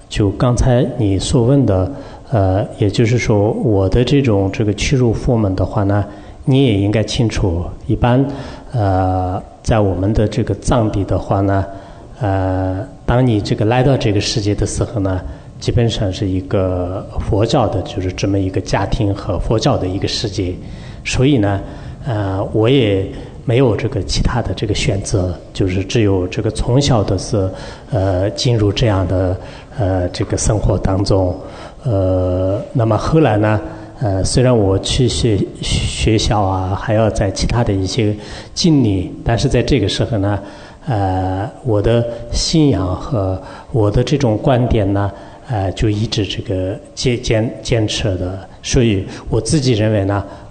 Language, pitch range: English, 95-120 Hz